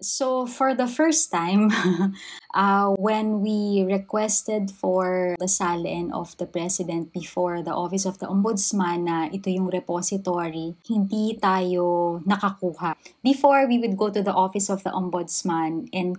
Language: English